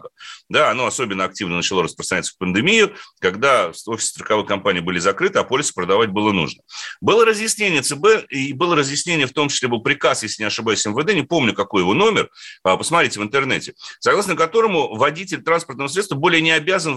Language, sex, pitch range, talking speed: Russian, male, 130-180 Hz, 175 wpm